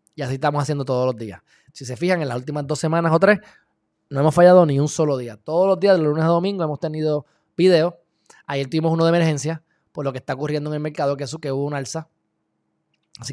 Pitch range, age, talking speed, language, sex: 135-170 Hz, 20-39, 250 wpm, Spanish, male